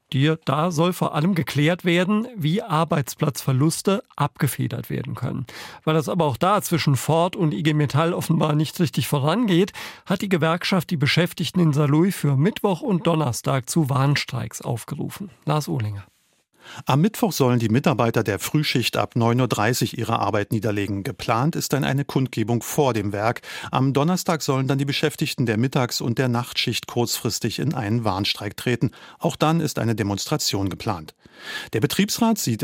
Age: 50-69